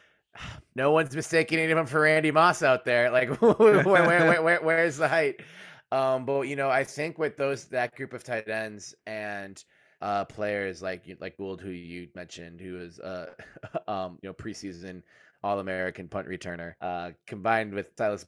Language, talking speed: English, 175 wpm